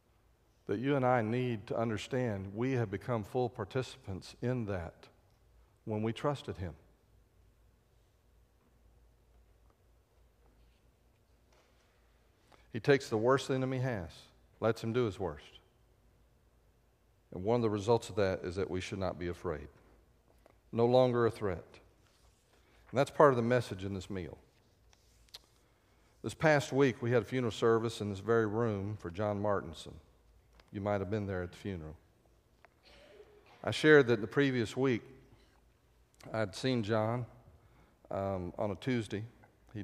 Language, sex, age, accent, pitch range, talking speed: English, male, 50-69, American, 95-120 Hz, 140 wpm